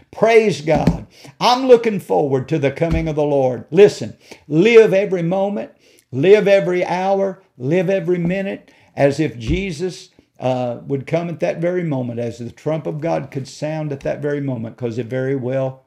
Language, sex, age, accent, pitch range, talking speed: English, male, 50-69, American, 125-165 Hz, 175 wpm